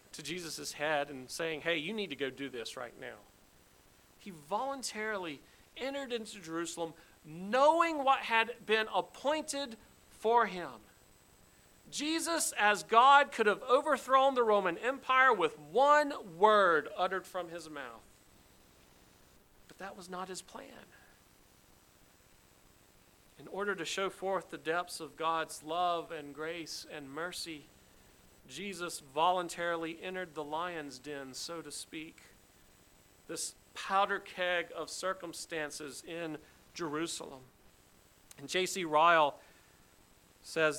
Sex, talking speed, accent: male, 120 wpm, American